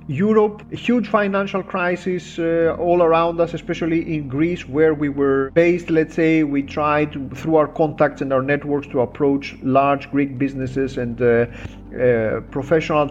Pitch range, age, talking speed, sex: 145-175 Hz, 40-59, 165 wpm, male